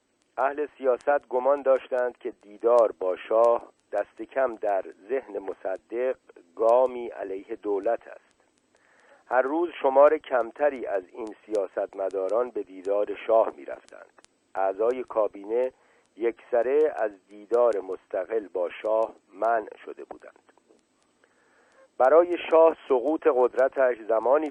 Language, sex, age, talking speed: Persian, male, 50-69, 105 wpm